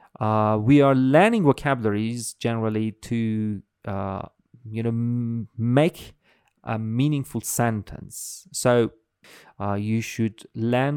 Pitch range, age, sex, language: 105-145 Hz, 30-49, male, English